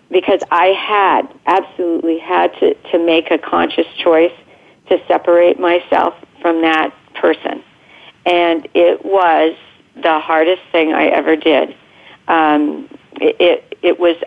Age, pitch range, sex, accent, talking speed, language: 50-69, 160-180 Hz, female, American, 130 wpm, English